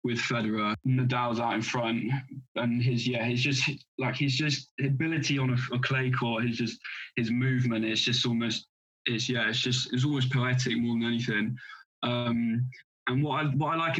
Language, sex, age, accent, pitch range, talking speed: English, male, 20-39, British, 115-130 Hz, 195 wpm